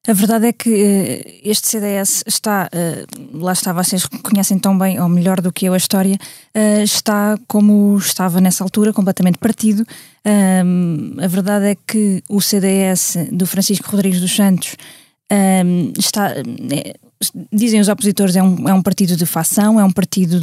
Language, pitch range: Portuguese, 185-210 Hz